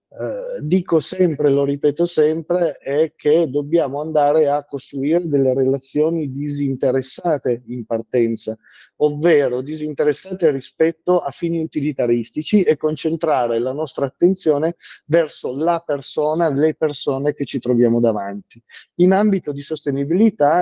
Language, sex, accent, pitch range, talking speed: Italian, male, native, 130-165 Hz, 115 wpm